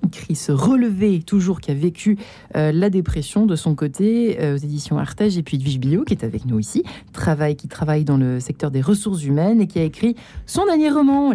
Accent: French